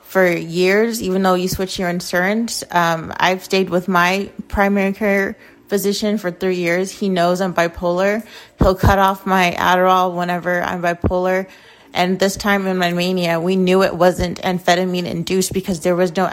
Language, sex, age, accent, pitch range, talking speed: English, female, 30-49, American, 175-195 Hz, 170 wpm